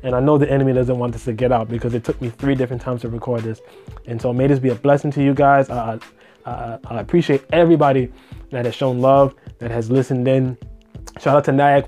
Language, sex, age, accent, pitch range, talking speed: English, male, 20-39, American, 125-155 Hz, 240 wpm